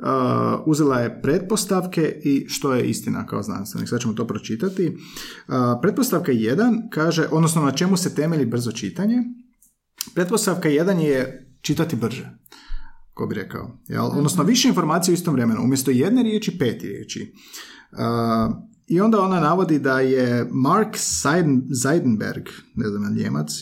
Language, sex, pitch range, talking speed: Croatian, male, 125-190 Hz, 145 wpm